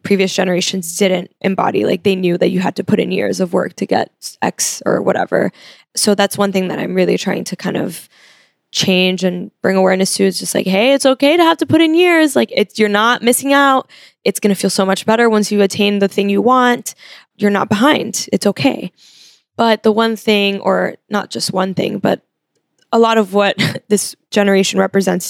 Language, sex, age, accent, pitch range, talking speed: English, female, 10-29, American, 190-210 Hz, 215 wpm